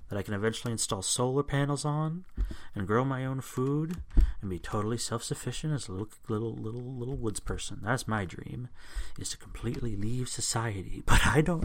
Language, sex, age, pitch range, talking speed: English, male, 30-49, 95-130 Hz, 185 wpm